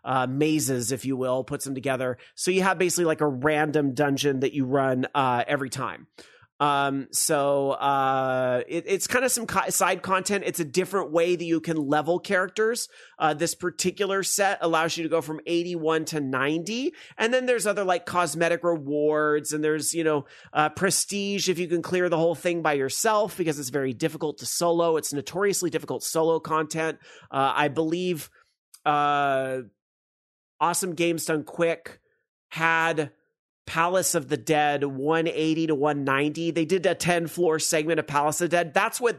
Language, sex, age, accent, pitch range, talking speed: English, male, 30-49, American, 145-180 Hz, 180 wpm